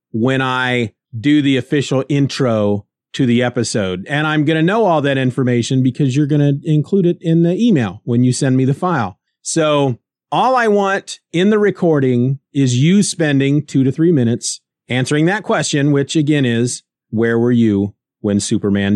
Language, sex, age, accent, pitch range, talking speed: English, male, 30-49, American, 120-160 Hz, 180 wpm